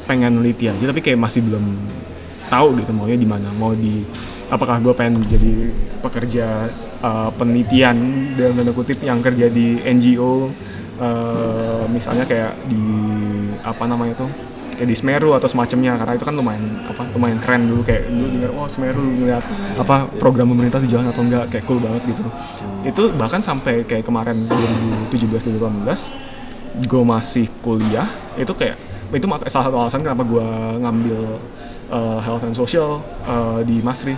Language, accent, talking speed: Indonesian, native, 160 wpm